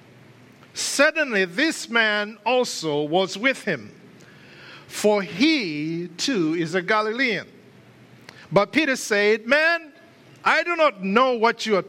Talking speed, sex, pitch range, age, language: 120 wpm, male, 155-220 Hz, 50-69, English